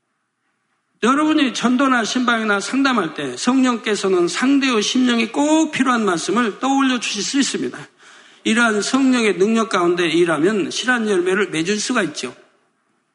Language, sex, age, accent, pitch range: Korean, male, 60-79, native, 215-300 Hz